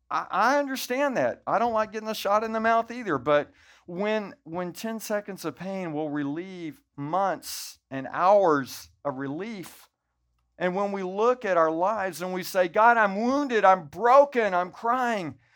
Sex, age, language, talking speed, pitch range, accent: male, 50-69, English, 170 wpm, 150-220 Hz, American